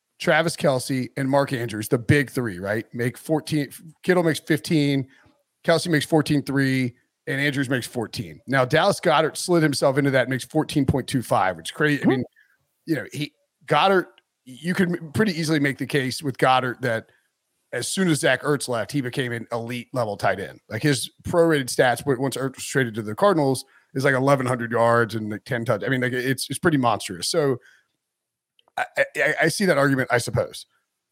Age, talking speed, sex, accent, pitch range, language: 40-59, 200 wpm, male, American, 125-155 Hz, English